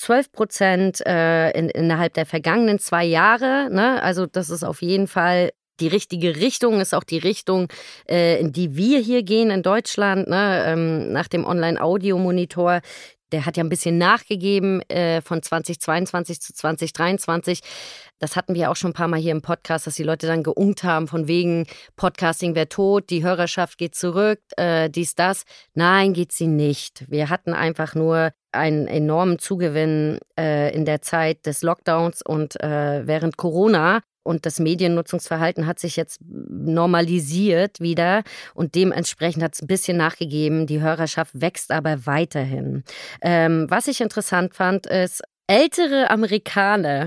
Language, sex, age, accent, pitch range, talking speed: German, female, 20-39, German, 160-190 Hz, 160 wpm